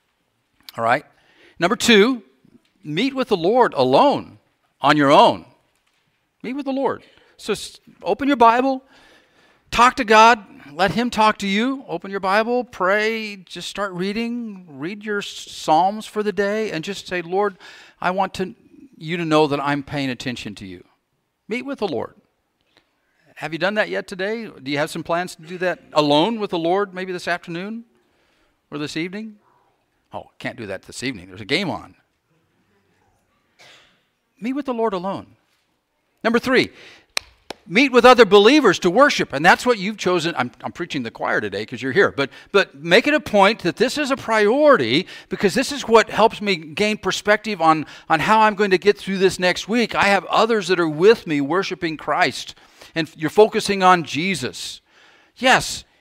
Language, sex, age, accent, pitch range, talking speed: English, male, 50-69, American, 165-220 Hz, 180 wpm